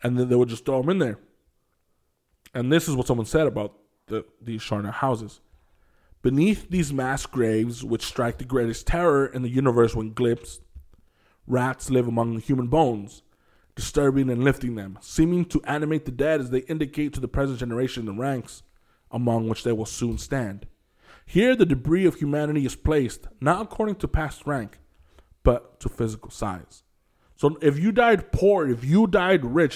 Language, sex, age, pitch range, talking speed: English, male, 20-39, 120-155 Hz, 175 wpm